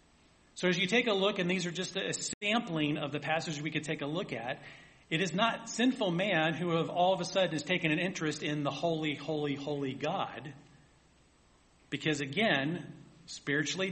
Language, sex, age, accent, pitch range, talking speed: English, male, 40-59, American, 140-175 Hz, 195 wpm